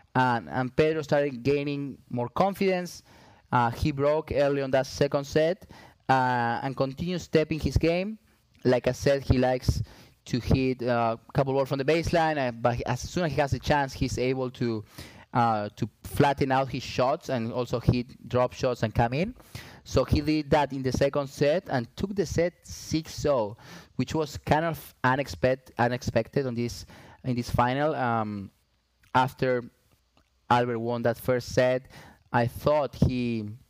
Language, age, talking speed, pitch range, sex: English, 20-39, 170 wpm, 115-140 Hz, male